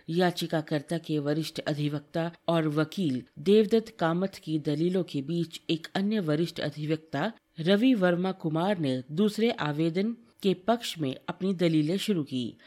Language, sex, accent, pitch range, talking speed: Hindi, female, native, 155-205 Hz, 135 wpm